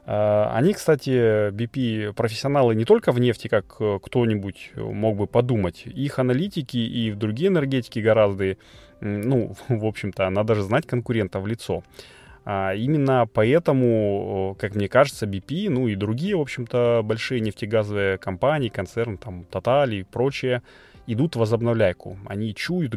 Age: 20-39